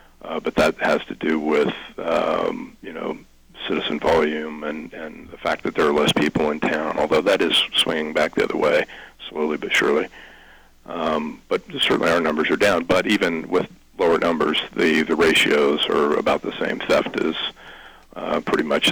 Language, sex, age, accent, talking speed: English, male, 40-59, American, 185 wpm